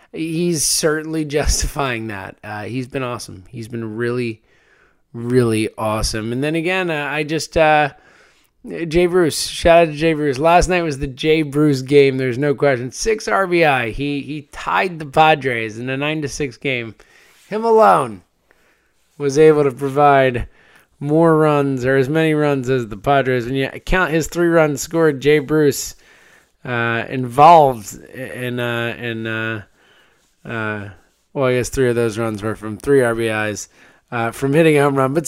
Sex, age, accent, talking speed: male, 20-39, American, 170 wpm